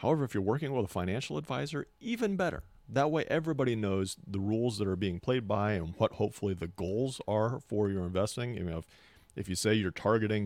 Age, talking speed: 40-59, 220 wpm